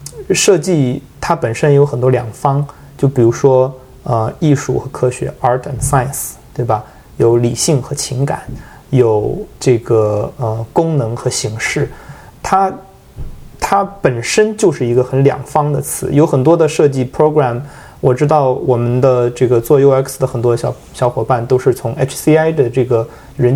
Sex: male